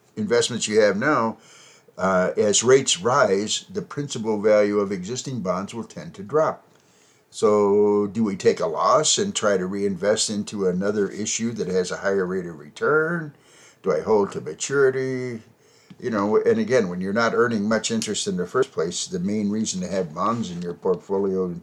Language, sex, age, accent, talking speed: English, male, 60-79, American, 185 wpm